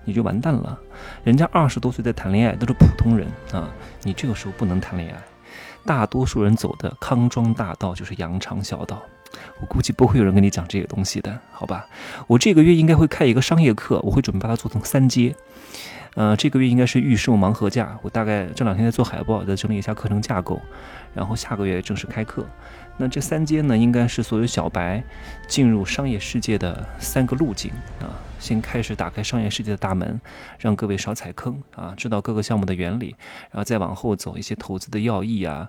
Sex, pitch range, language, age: male, 95-120 Hz, Chinese, 20-39